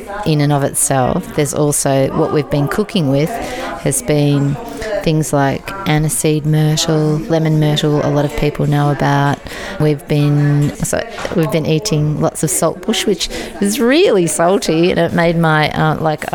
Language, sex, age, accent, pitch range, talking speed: English, female, 30-49, Australian, 150-180 Hz, 160 wpm